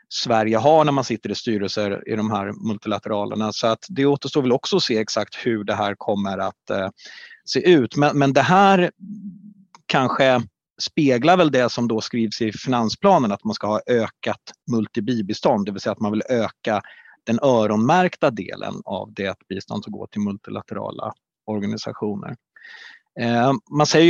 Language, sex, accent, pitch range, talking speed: Swedish, male, native, 110-150 Hz, 170 wpm